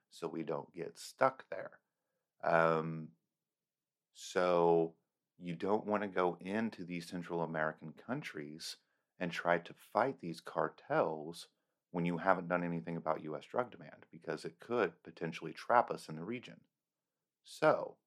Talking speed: 145 wpm